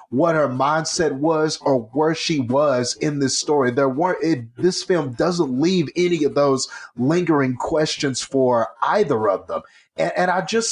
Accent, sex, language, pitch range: American, male, English, 140-175 Hz